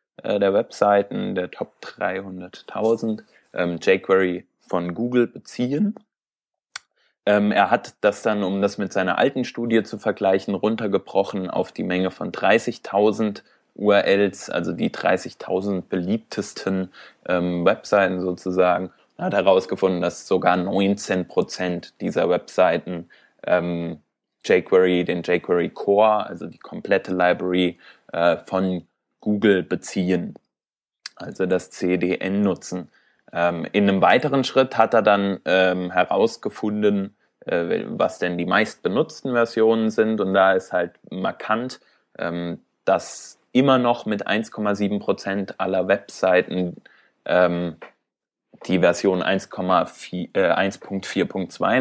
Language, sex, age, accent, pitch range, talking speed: German, male, 20-39, German, 90-105 Hz, 110 wpm